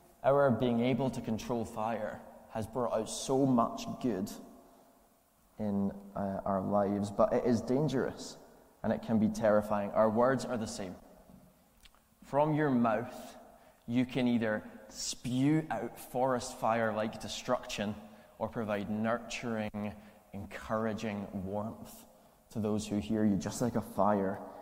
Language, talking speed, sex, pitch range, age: English, 135 wpm, male, 105-130 Hz, 20-39